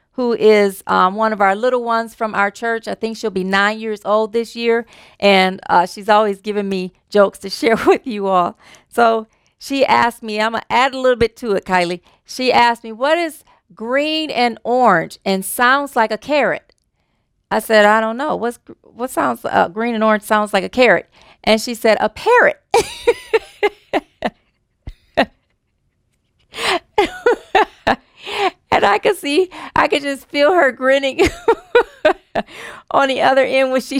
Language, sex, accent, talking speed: English, female, American, 170 wpm